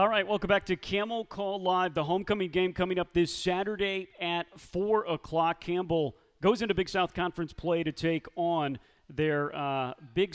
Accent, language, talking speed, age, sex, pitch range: American, English, 180 wpm, 40-59, male, 150-185 Hz